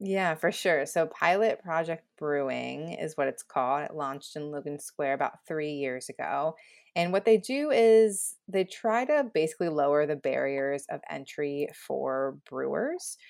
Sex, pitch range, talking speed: female, 140-195 Hz, 165 wpm